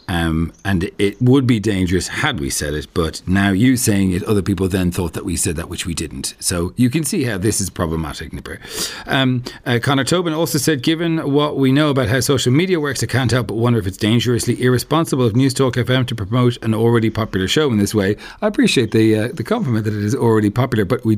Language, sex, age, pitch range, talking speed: English, male, 40-59, 100-130 Hz, 240 wpm